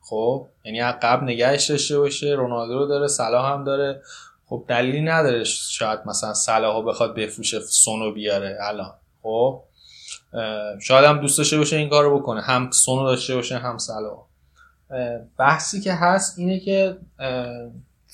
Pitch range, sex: 115-140 Hz, male